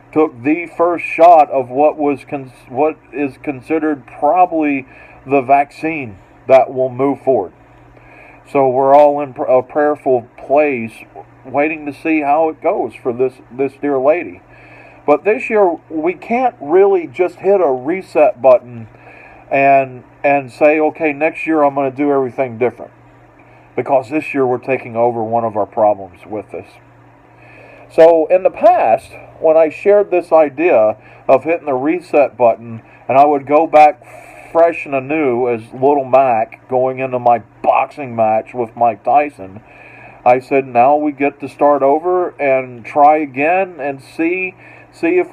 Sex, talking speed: male, 160 wpm